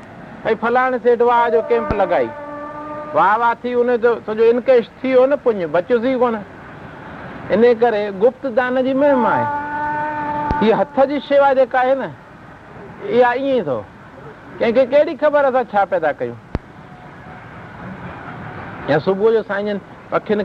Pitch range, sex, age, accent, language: 200-260 Hz, male, 60-79, native, Hindi